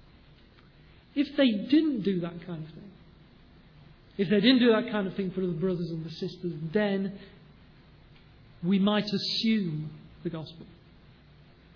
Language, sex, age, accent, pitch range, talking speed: English, male, 40-59, British, 175-220 Hz, 145 wpm